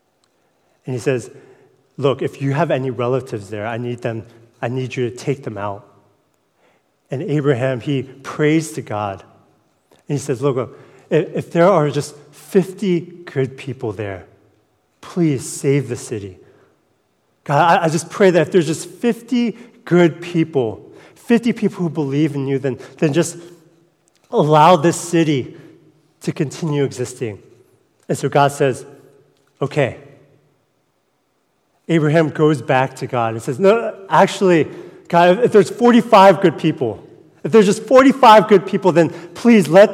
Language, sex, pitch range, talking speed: English, male, 135-195 Hz, 145 wpm